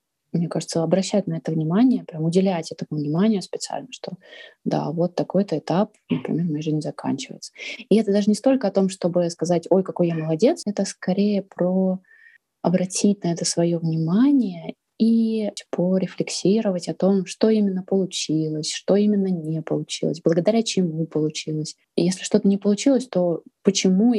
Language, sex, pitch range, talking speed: Russian, female, 165-205 Hz, 150 wpm